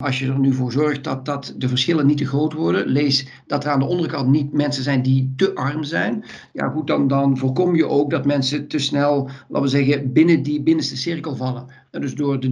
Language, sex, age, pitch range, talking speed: Dutch, male, 50-69, 130-145 Hz, 240 wpm